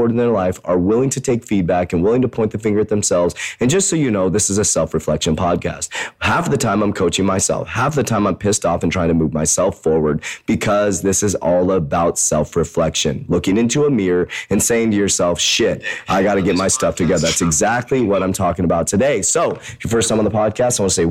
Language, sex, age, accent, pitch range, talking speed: English, male, 30-49, American, 85-115 Hz, 235 wpm